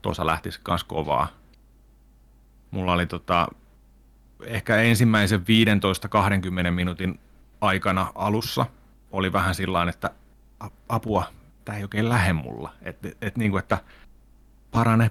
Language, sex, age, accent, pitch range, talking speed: Finnish, male, 30-49, native, 85-105 Hz, 115 wpm